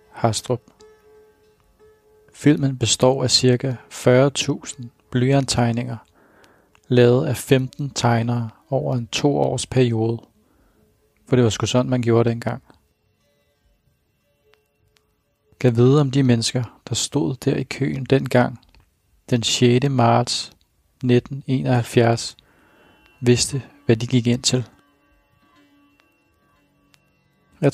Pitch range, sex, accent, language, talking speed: 120-135 Hz, male, native, Danish, 105 wpm